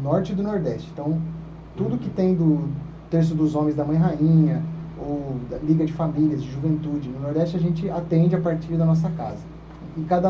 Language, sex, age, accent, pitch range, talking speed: Portuguese, male, 30-49, Brazilian, 145-175 Hz, 200 wpm